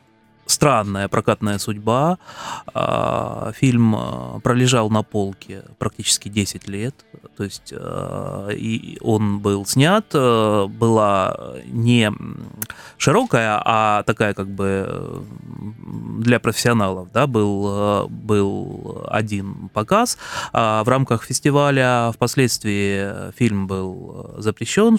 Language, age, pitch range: Russian, 20-39, 100-125 Hz